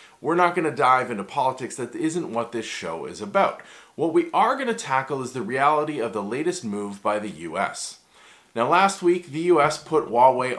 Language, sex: English, male